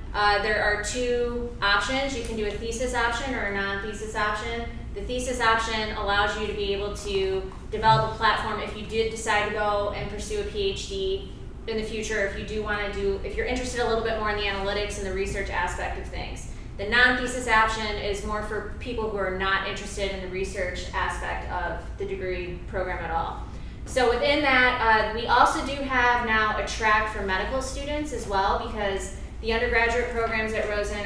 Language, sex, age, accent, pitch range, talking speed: English, female, 20-39, American, 200-245 Hz, 205 wpm